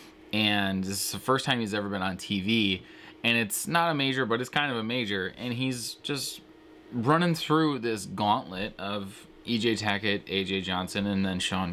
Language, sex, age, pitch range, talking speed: English, male, 20-39, 95-125 Hz, 190 wpm